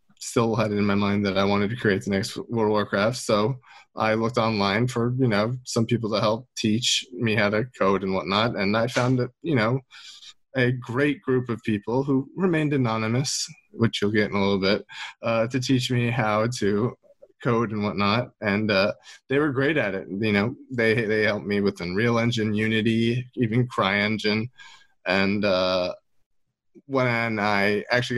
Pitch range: 100-125 Hz